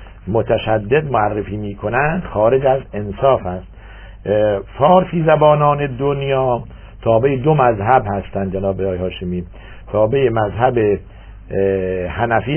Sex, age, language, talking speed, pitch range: male, 60-79, Persian, 95 wpm, 100-130 Hz